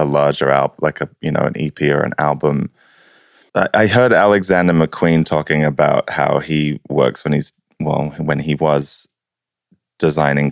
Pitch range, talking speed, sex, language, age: 70-80 Hz, 160 wpm, male, English, 20-39